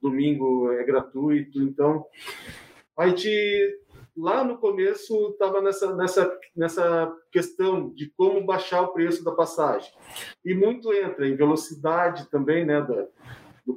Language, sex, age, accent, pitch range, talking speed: Portuguese, male, 40-59, Brazilian, 150-185 Hz, 130 wpm